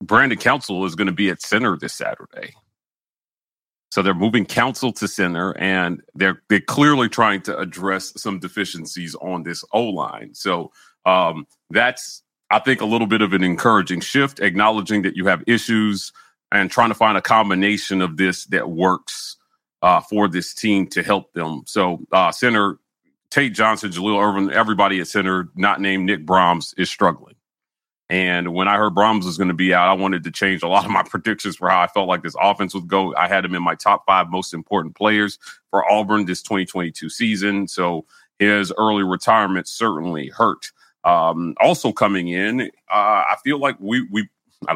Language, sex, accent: English, male, American